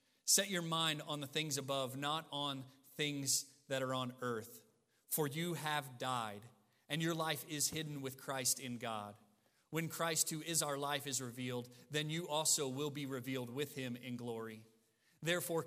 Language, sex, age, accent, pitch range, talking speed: English, male, 40-59, American, 135-165 Hz, 175 wpm